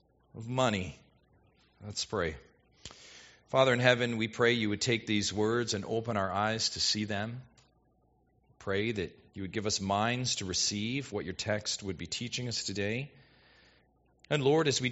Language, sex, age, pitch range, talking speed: English, male, 40-59, 100-135 Hz, 170 wpm